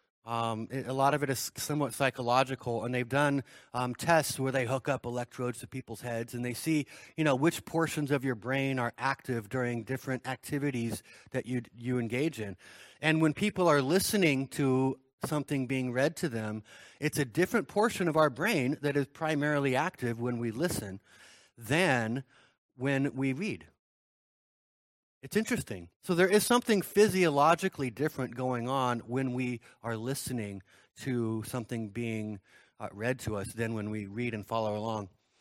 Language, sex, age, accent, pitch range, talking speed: English, male, 30-49, American, 120-150 Hz, 165 wpm